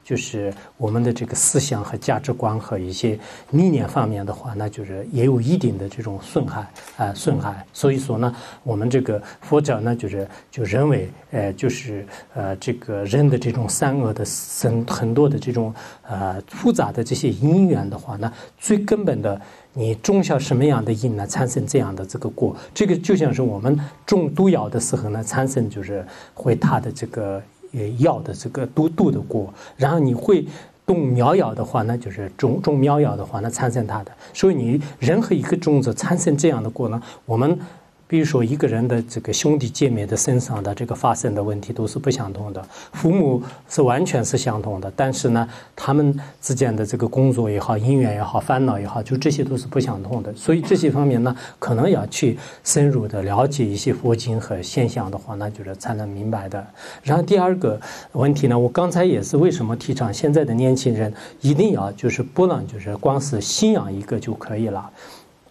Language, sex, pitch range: English, male, 110-145 Hz